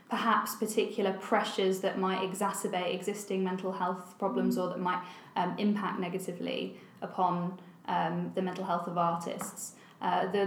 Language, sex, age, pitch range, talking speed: English, female, 10-29, 185-210 Hz, 140 wpm